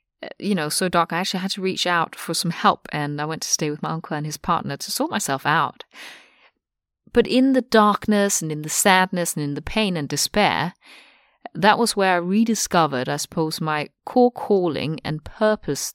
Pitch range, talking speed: 150-215 Hz, 205 wpm